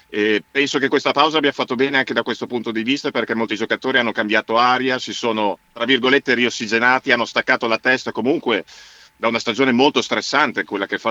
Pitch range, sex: 115-130 Hz, male